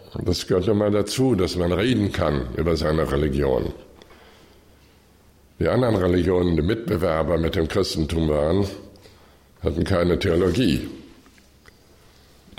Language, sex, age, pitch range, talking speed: German, male, 60-79, 80-105 Hz, 115 wpm